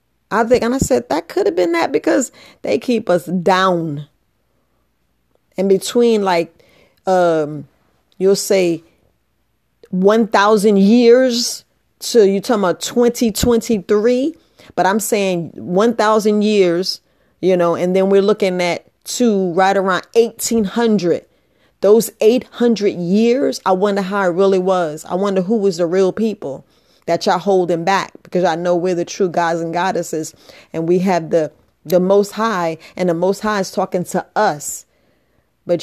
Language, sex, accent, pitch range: English, female, American, 175-215 Hz